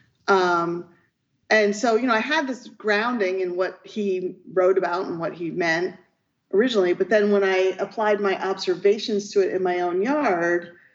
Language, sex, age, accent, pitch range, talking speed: English, female, 40-59, American, 180-235 Hz, 175 wpm